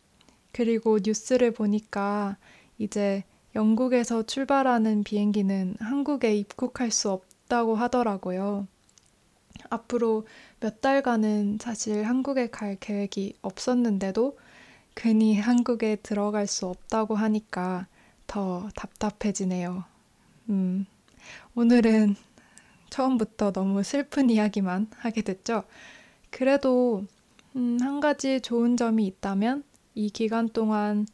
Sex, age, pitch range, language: female, 20-39, 200-240 Hz, Korean